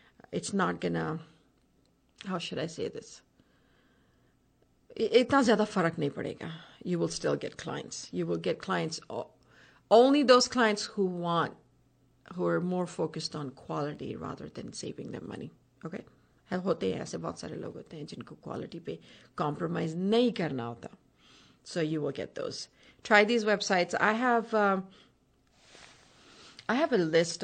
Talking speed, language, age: 120 wpm, English, 50-69